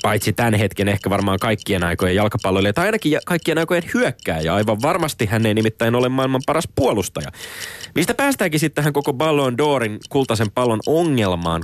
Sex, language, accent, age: male, Finnish, native, 30-49